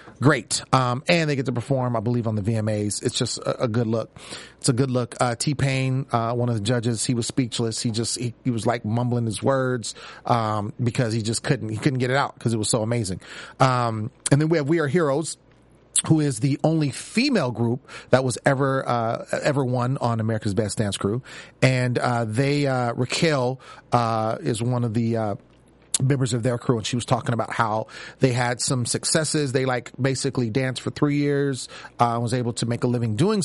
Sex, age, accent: male, 30-49, American